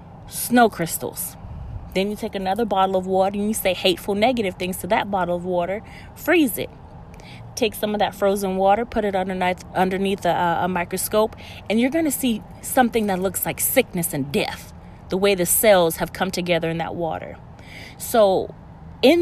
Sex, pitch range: female, 180-230 Hz